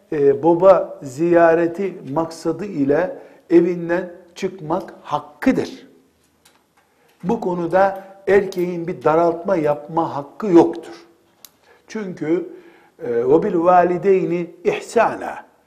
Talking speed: 75 wpm